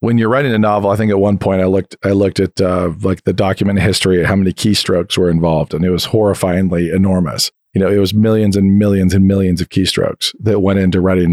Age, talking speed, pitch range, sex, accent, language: 40-59, 245 wpm, 95-110 Hz, male, American, English